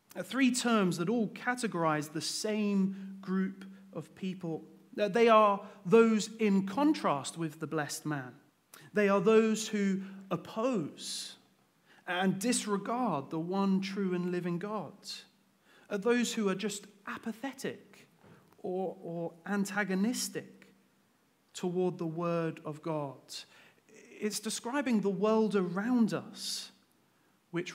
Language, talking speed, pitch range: English, 110 wpm, 155-210 Hz